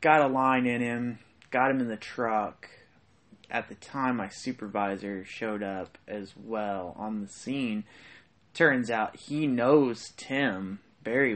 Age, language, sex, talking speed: 20-39, English, male, 150 wpm